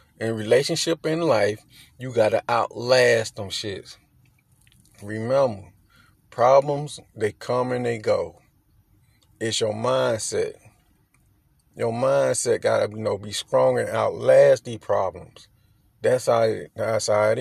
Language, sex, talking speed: English, male, 130 wpm